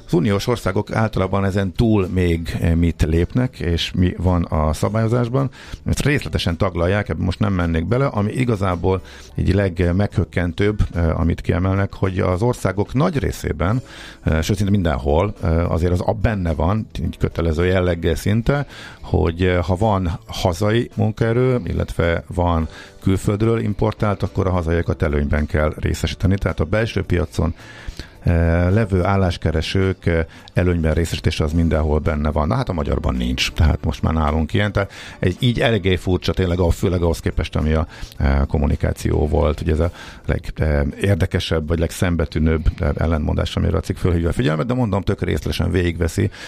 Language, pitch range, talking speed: Hungarian, 80-105 Hz, 145 wpm